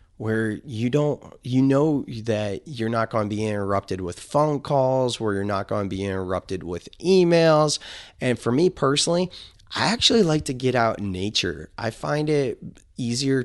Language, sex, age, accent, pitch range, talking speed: English, male, 20-39, American, 100-140 Hz, 180 wpm